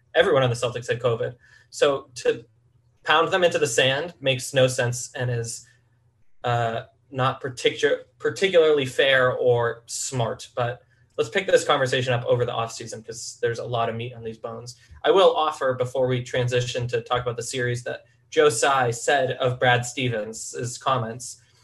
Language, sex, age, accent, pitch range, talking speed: English, male, 20-39, American, 120-145 Hz, 170 wpm